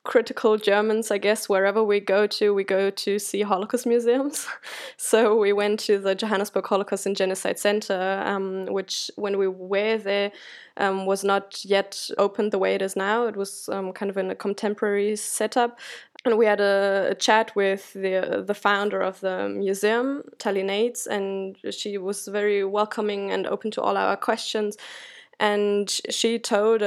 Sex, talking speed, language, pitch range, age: female, 175 wpm, English, 195-215 Hz, 20-39